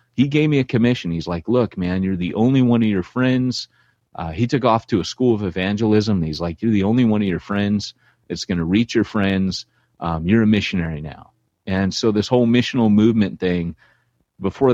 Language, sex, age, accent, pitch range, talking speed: English, male, 30-49, American, 85-115 Hz, 215 wpm